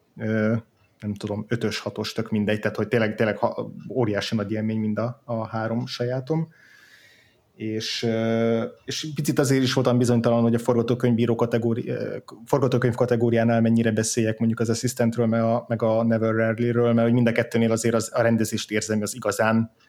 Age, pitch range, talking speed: 20-39, 110-120 Hz, 155 wpm